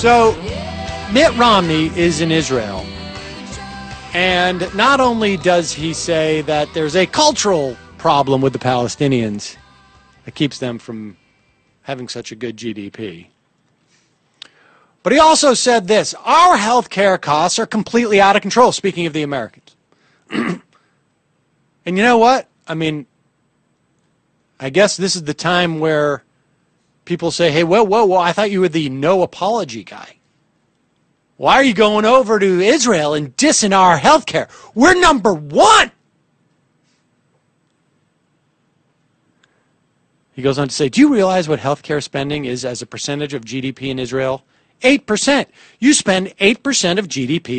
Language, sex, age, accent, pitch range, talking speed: English, male, 40-59, American, 140-215 Hz, 145 wpm